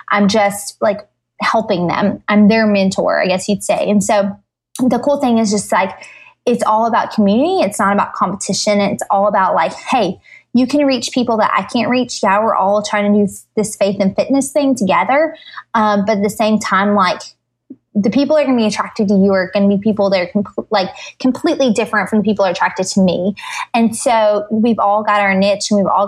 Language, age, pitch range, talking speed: English, 20-39, 195-225 Hz, 220 wpm